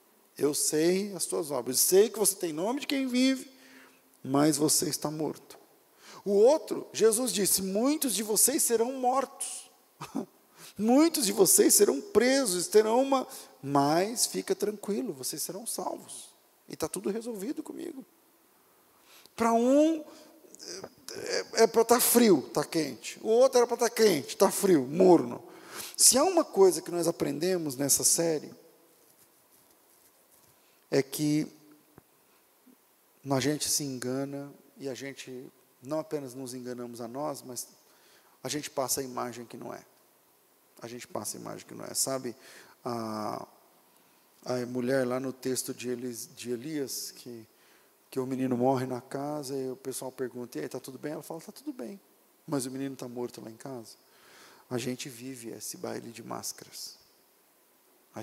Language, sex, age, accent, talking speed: Portuguese, male, 40-59, Brazilian, 155 wpm